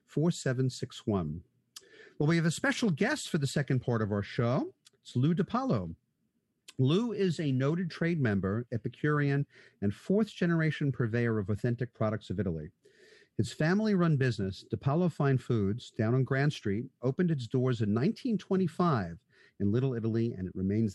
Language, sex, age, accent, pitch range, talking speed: English, male, 50-69, American, 115-170 Hz, 150 wpm